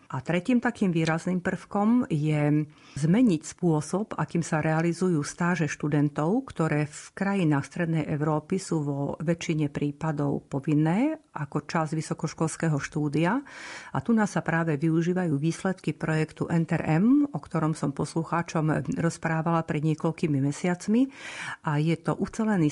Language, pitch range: Slovak, 150-180 Hz